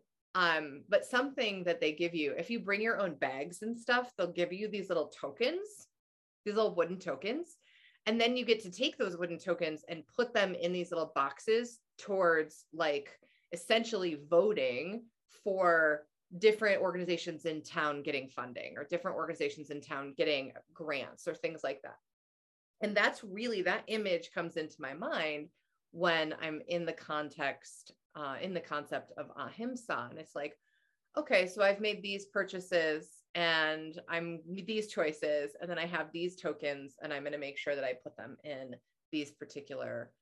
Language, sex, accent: English, female, American